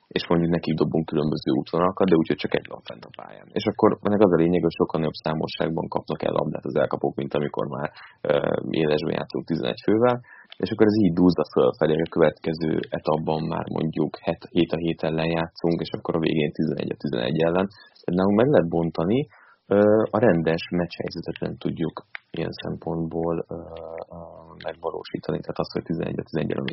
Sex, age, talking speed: male, 30-49, 170 wpm